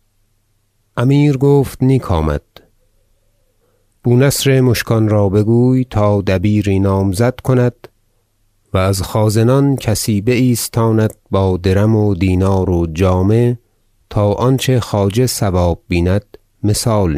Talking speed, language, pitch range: 100 wpm, Persian, 95-115 Hz